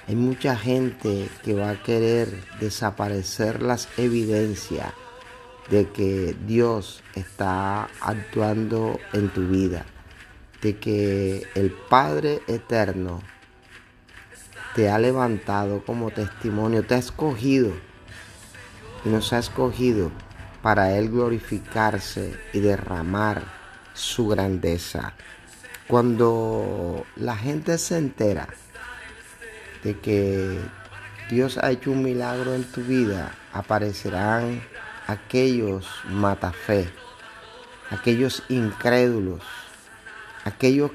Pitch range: 100-125 Hz